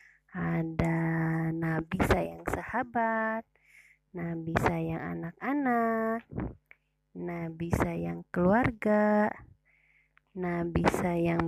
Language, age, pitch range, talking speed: Indonesian, 20-39, 170-215 Hz, 65 wpm